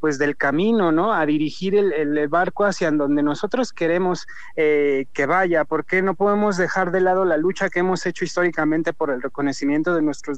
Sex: male